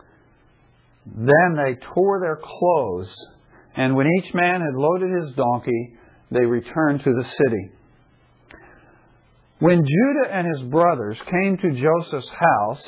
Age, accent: 50-69, American